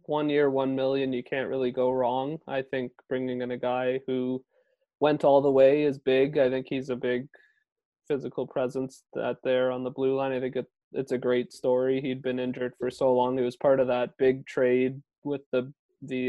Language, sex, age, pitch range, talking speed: English, male, 20-39, 125-135 Hz, 215 wpm